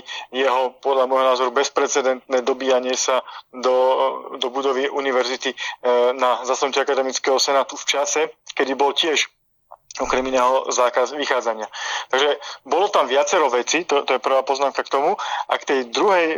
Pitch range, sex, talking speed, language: 130-145 Hz, male, 145 wpm, Slovak